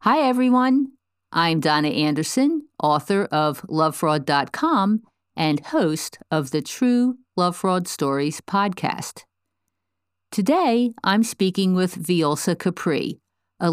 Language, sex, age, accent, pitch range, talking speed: English, female, 50-69, American, 150-240 Hz, 105 wpm